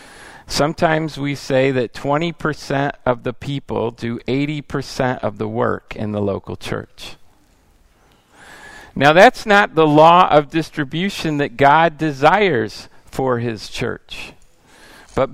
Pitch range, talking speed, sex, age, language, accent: 125-160 Hz, 120 wpm, male, 50-69, English, American